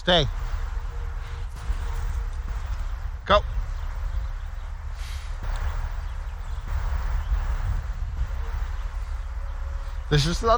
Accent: American